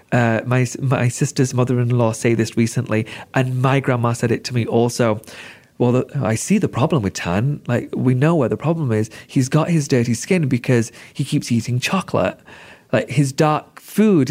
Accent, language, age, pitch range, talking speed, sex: British, English, 30-49, 120-150 Hz, 190 wpm, male